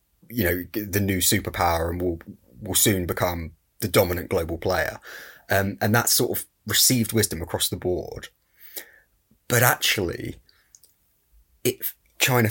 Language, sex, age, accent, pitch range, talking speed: English, male, 20-39, British, 95-115 Hz, 135 wpm